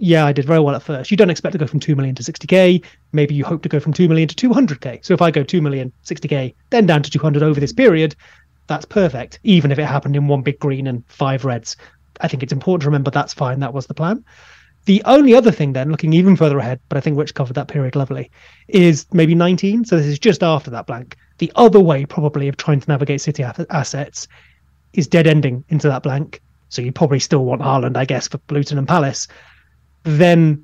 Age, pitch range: 30-49, 140-180 Hz